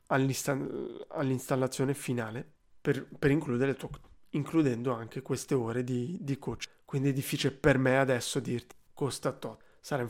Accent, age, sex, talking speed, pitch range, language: native, 20-39, male, 150 wpm, 130-160 Hz, Italian